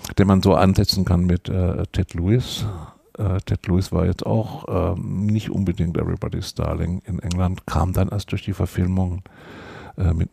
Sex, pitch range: male, 90-105 Hz